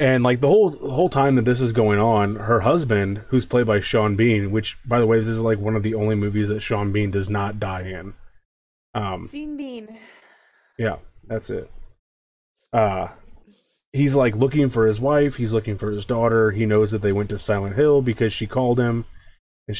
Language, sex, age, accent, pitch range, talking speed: English, male, 20-39, American, 100-115 Hz, 200 wpm